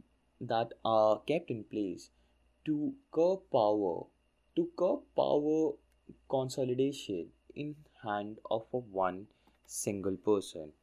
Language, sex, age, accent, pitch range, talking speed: English, male, 20-39, Indian, 90-135 Hz, 105 wpm